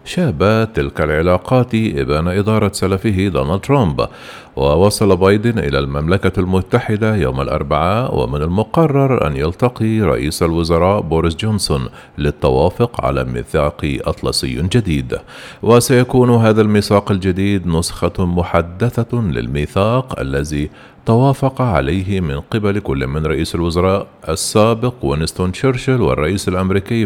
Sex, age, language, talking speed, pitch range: male, 50-69, Arabic, 110 wpm, 80-110 Hz